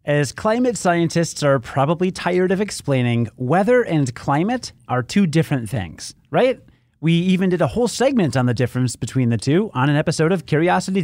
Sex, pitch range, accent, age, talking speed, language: male, 125-190 Hz, American, 30-49, 180 wpm, English